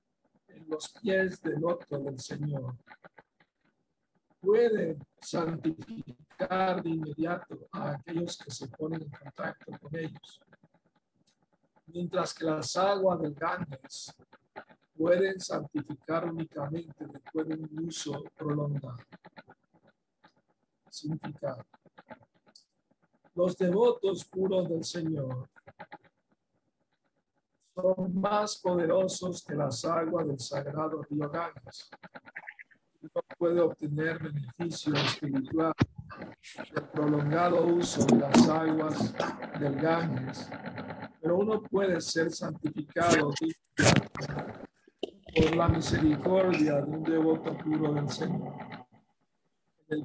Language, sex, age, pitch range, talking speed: Spanish, male, 50-69, 150-175 Hz, 95 wpm